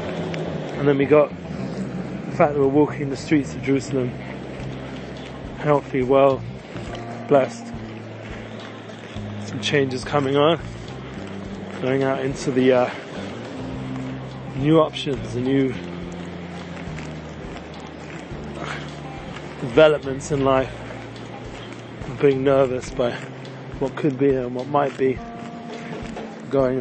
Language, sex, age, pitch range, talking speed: English, male, 30-49, 110-140 Hz, 95 wpm